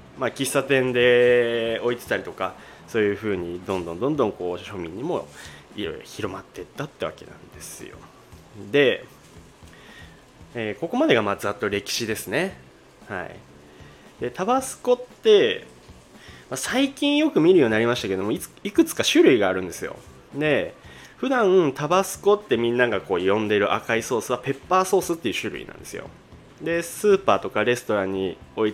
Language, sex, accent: Japanese, male, native